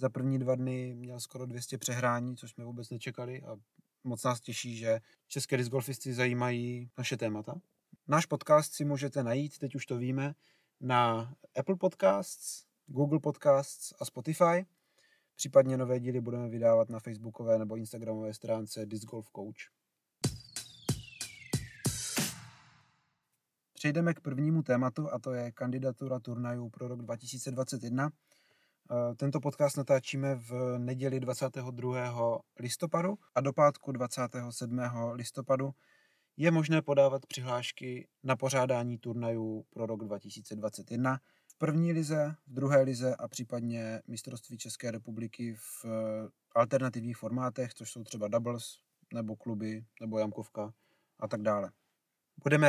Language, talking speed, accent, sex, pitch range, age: Czech, 125 wpm, native, male, 120-135 Hz, 30-49